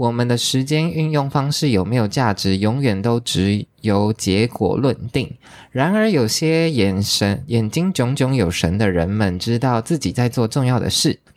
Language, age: Chinese, 20-39